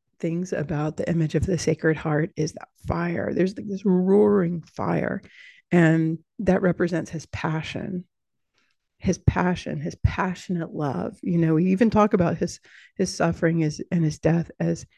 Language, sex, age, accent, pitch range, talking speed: English, female, 40-59, American, 160-185 Hz, 155 wpm